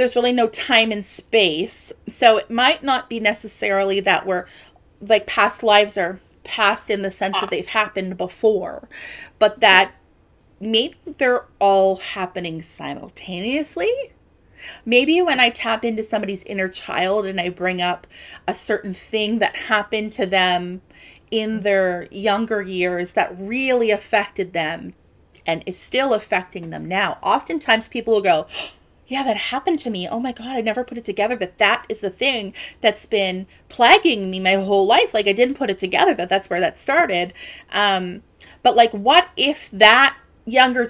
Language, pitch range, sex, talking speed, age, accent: English, 195-240 Hz, female, 165 wpm, 30-49, American